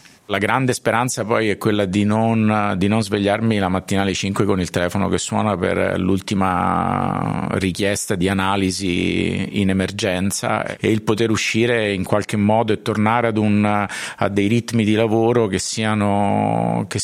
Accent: native